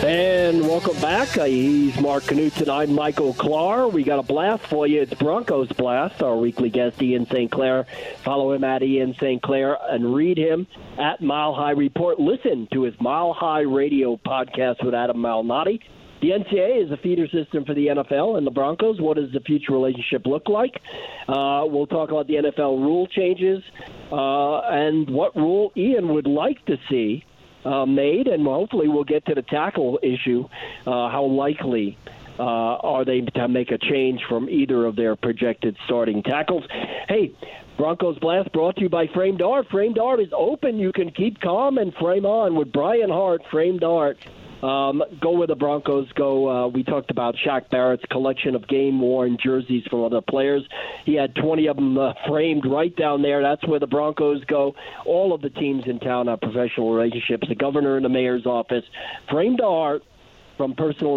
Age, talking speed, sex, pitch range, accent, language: 50-69, 185 wpm, male, 125-155 Hz, American, English